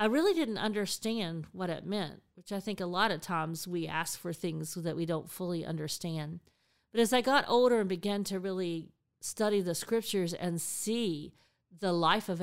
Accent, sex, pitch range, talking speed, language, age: American, female, 170-210 Hz, 195 wpm, English, 50-69